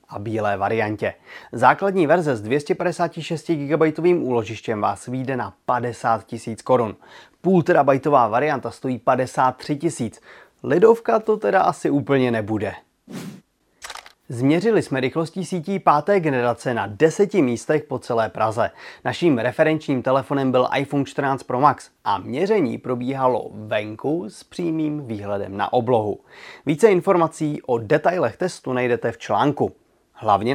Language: Czech